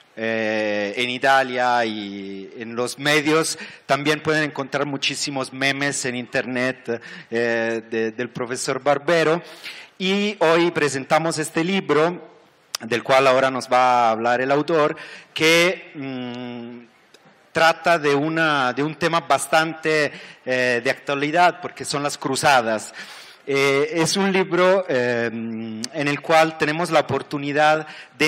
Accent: Mexican